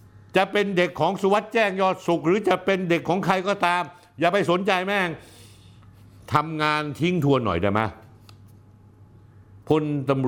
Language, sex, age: Thai, male, 60-79